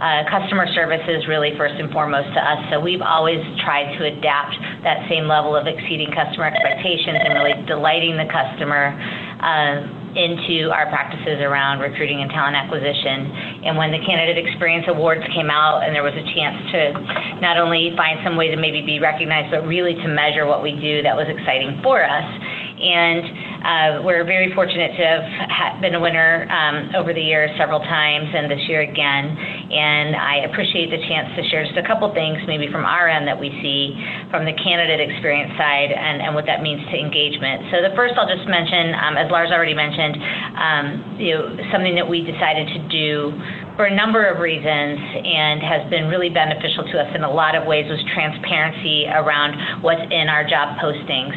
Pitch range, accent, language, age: 150-175 Hz, American, English, 40-59